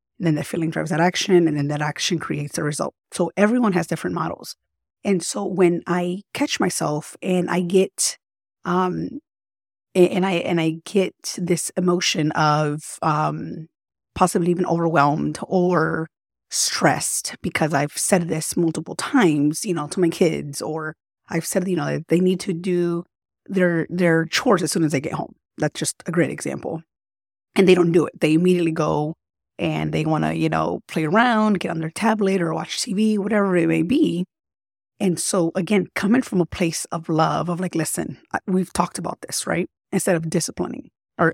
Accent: American